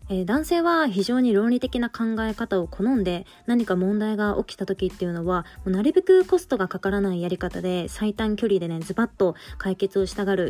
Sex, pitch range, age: female, 185-235 Hz, 20-39